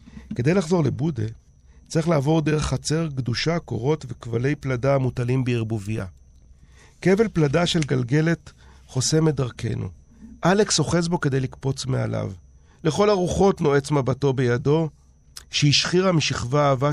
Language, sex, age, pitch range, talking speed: Hebrew, male, 40-59, 120-160 Hz, 115 wpm